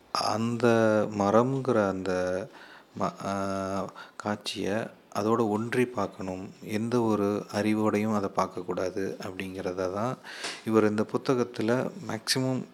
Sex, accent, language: male, native, Tamil